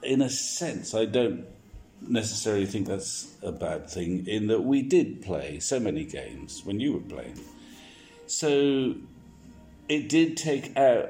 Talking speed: 150 wpm